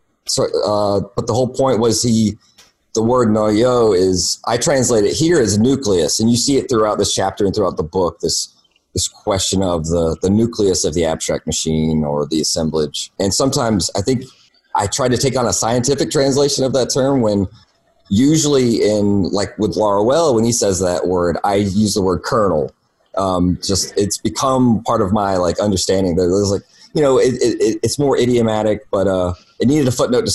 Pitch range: 95-120 Hz